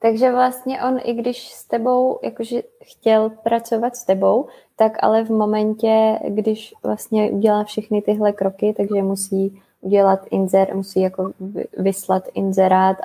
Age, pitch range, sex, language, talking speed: 20-39, 200-230 Hz, female, Czech, 140 wpm